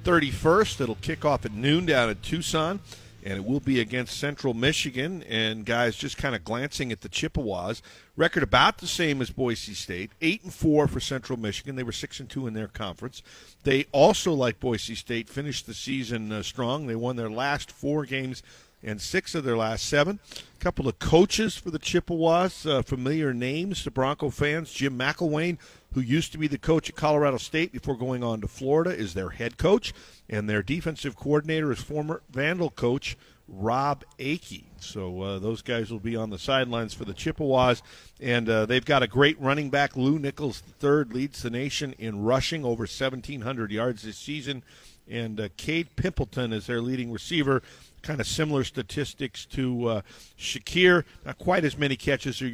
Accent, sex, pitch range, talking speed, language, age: American, male, 115-150 Hz, 190 wpm, English, 50-69